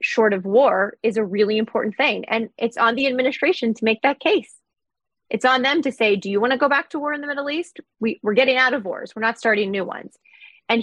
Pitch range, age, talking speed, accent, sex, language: 210-265 Hz, 20-39, 250 wpm, American, female, English